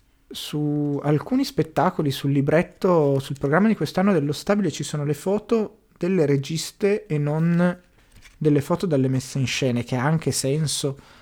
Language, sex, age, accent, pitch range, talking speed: Italian, male, 30-49, native, 130-165 Hz, 155 wpm